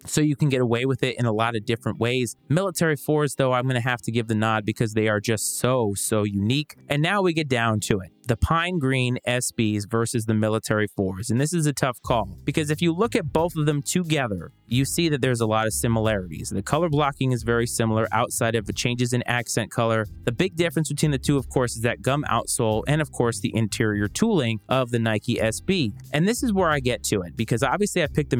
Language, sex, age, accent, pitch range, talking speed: English, male, 20-39, American, 110-145 Hz, 245 wpm